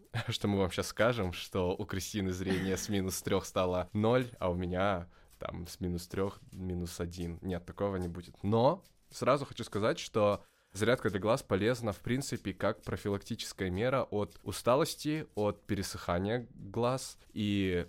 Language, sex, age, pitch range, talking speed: Russian, male, 20-39, 90-105 Hz, 160 wpm